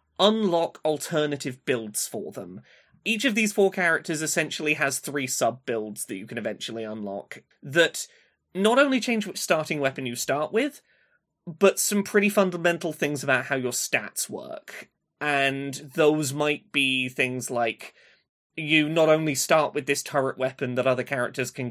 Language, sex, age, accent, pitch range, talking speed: English, male, 20-39, British, 130-160 Hz, 160 wpm